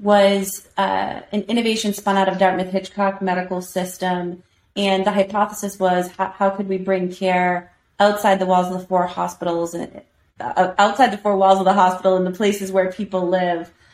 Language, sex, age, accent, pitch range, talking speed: English, female, 30-49, American, 180-200 Hz, 180 wpm